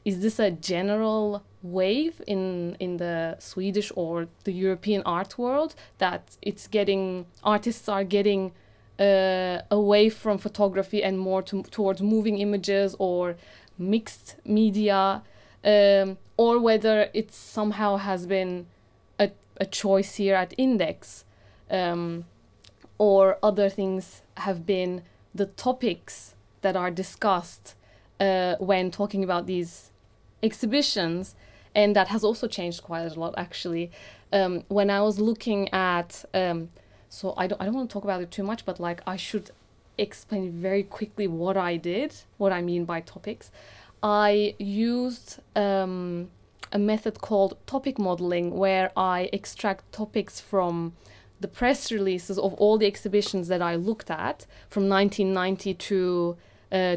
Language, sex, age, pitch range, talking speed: English, female, 20-39, 180-210 Hz, 140 wpm